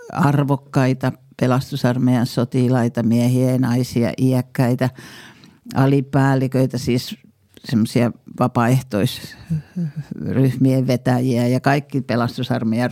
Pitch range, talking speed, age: 125-155 Hz, 65 wpm, 50-69